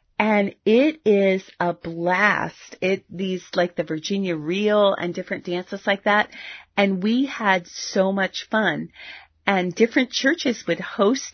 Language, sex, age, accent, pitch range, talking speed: English, female, 40-59, American, 175-205 Hz, 145 wpm